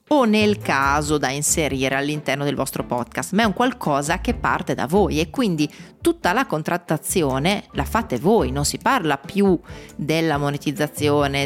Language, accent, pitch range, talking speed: Italian, native, 140-185 Hz, 160 wpm